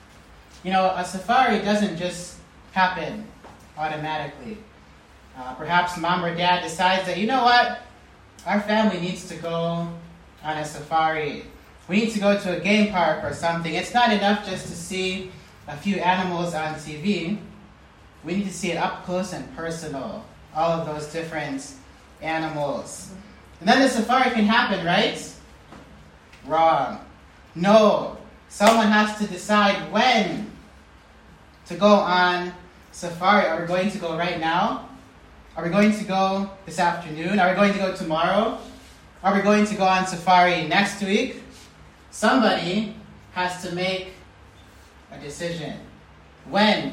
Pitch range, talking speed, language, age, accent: 155-200 Hz, 145 wpm, English, 30-49, American